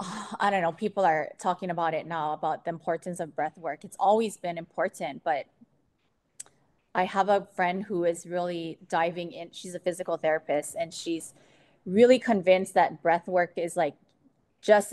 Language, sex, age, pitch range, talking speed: English, female, 20-39, 165-200 Hz, 175 wpm